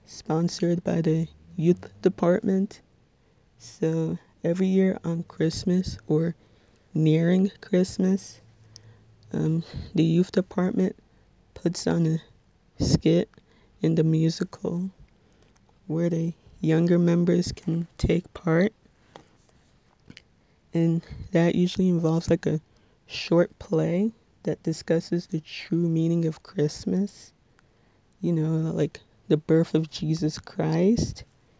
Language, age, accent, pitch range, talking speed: English, 20-39, American, 160-180 Hz, 105 wpm